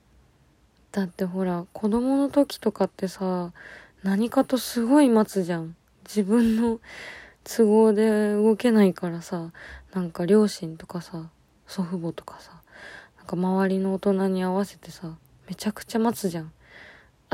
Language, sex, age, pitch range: Japanese, female, 20-39, 175-210 Hz